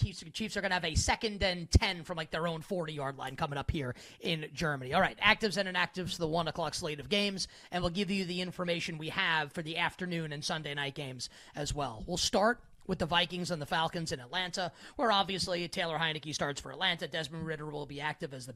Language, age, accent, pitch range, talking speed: English, 30-49, American, 160-195 Hz, 235 wpm